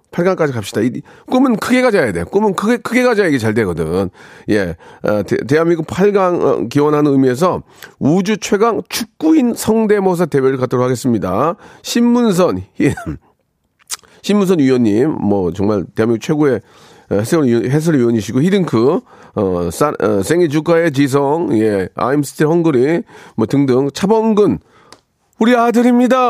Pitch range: 130-205 Hz